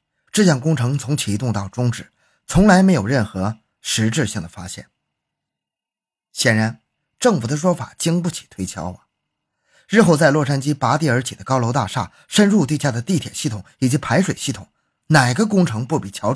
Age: 20-39